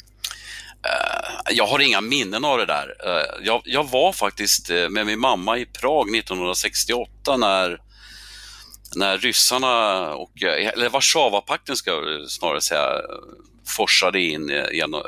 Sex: male